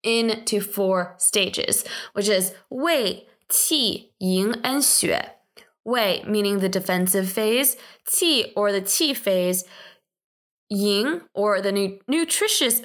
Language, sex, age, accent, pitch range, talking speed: English, female, 20-39, American, 190-255 Hz, 110 wpm